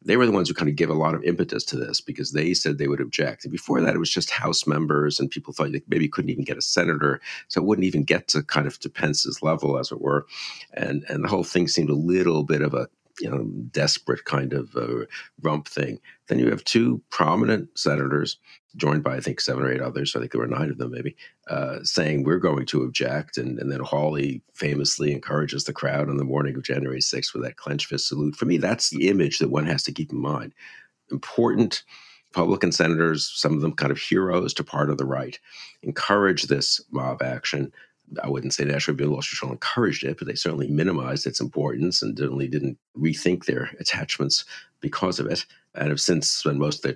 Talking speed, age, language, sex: 235 wpm, 50-69, English, male